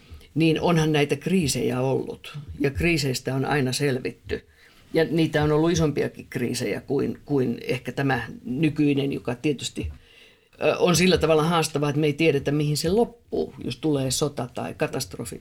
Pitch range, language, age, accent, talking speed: 125-155 Hz, Finnish, 50-69, native, 150 wpm